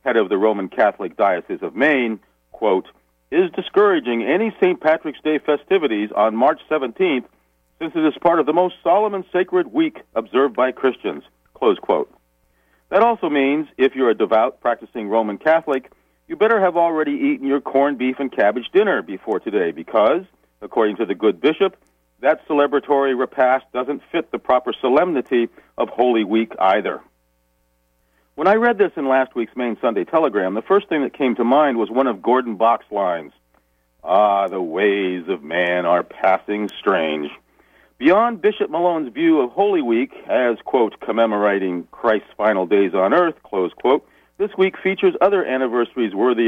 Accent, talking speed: American, 170 wpm